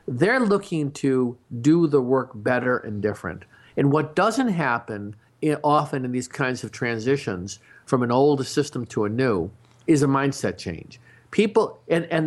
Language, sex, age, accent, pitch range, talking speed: English, male, 50-69, American, 125-170 Hz, 160 wpm